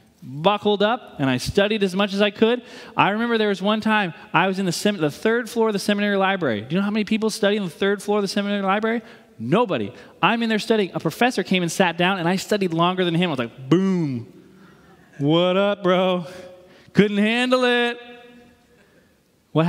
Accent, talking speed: American, 215 wpm